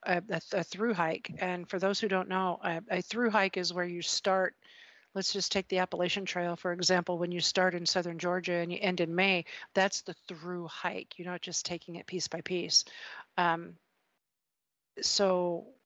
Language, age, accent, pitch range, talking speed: English, 50-69, American, 175-200 Hz, 195 wpm